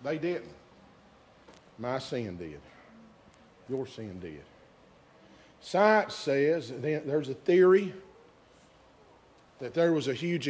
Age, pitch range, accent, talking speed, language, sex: 50-69, 130-180 Hz, American, 110 wpm, English, male